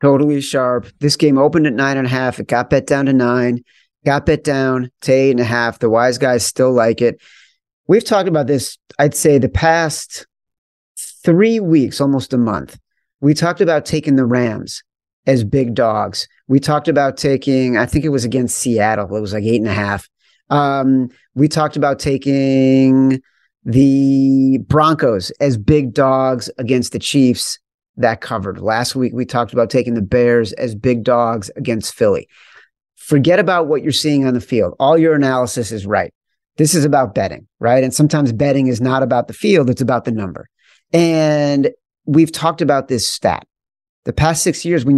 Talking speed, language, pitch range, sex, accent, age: 185 wpm, English, 120-150 Hz, male, American, 40-59